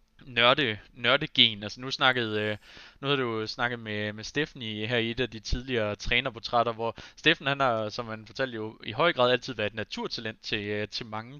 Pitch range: 110-130 Hz